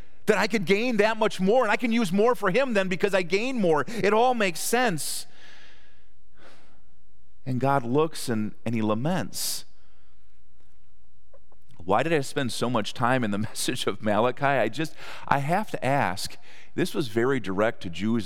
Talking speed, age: 180 wpm, 40-59